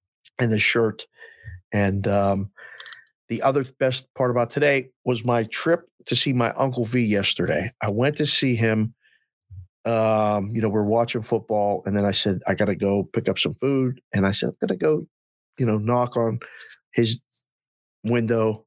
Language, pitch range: English, 110-135 Hz